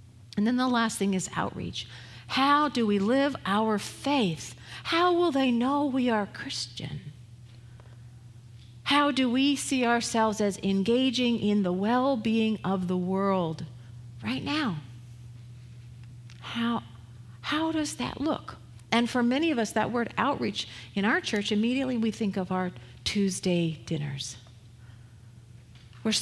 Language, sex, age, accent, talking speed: English, female, 50-69, American, 135 wpm